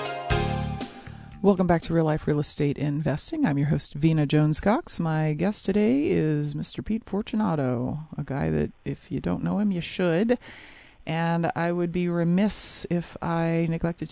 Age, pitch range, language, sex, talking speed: 40-59, 165-205 Hz, English, female, 160 wpm